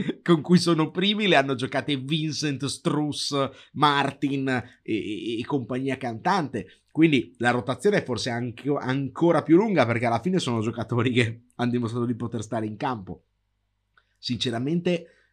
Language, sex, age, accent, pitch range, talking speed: Italian, male, 30-49, native, 110-140 Hz, 145 wpm